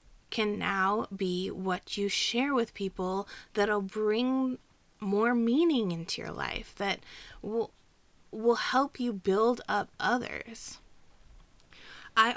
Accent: American